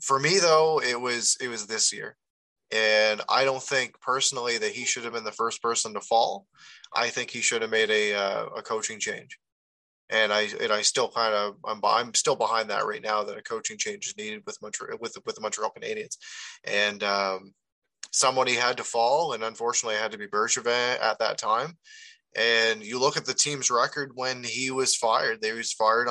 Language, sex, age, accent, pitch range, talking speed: English, male, 20-39, American, 115-175 Hz, 210 wpm